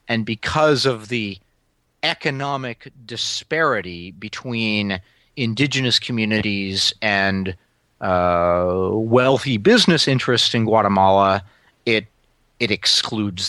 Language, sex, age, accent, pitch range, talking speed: English, male, 40-59, American, 100-170 Hz, 85 wpm